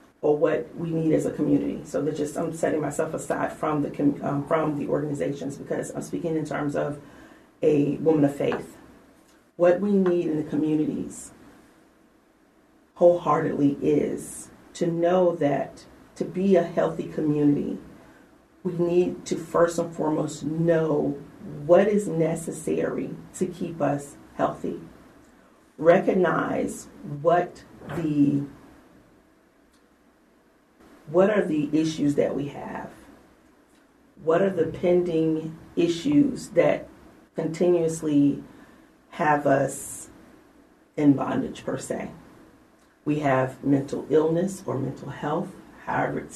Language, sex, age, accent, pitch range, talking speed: English, female, 40-59, American, 145-180 Hz, 120 wpm